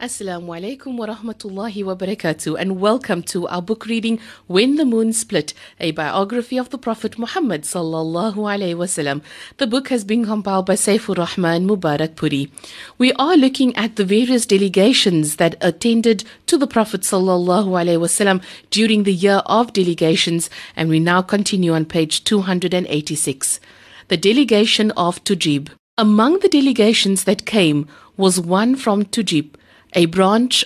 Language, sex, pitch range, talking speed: English, female, 165-225 Hz, 155 wpm